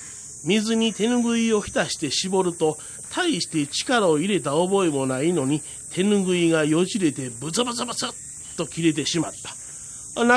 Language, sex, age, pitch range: Japanese, male, 40-59, 145-220 Hz